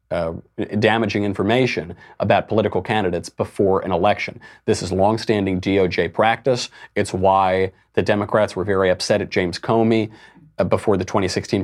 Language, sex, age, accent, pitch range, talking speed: English, male, 40-59, American, 95-125 Hz, 145 wpm